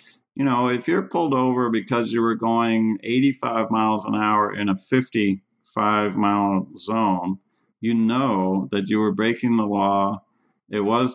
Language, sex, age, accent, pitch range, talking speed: English, male, 50-69, American, 105-120 Hz, 150 wpm